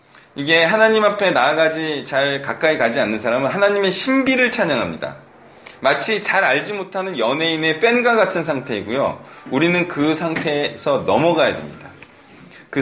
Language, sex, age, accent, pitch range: Korean, male, 40-59, native, 135-190 Hz